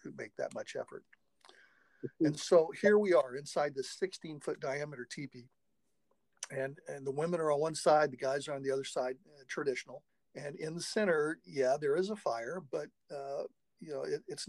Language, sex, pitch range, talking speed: English, male, 135-185 Hz, 190 wpm